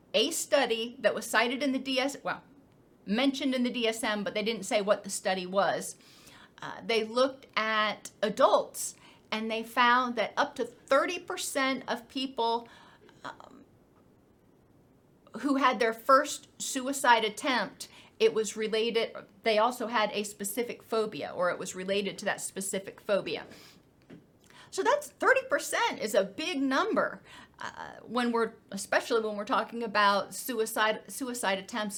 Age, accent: 40-59, American